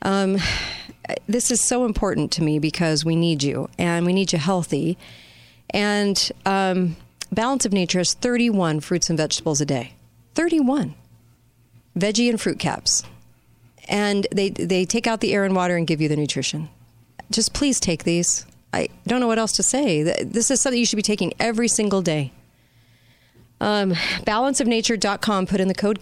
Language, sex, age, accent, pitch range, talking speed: English, female, 40-59, American, 155-215 Hz, 170 wpm